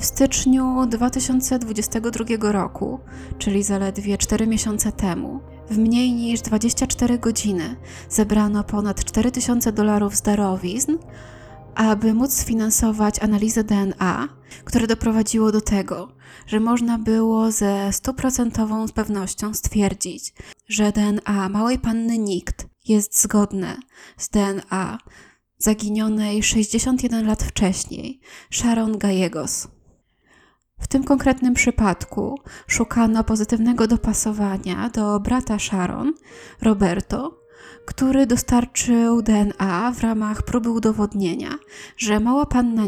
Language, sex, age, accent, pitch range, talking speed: Polish, female, 20-39, native, 205-235 Hz, 100 wpm